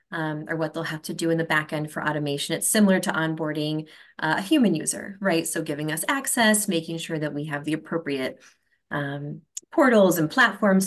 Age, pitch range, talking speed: 20-39, 150-175 Hz, 205 wpm